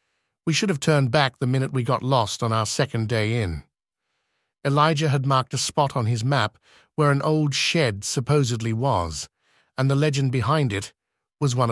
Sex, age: male, 50-69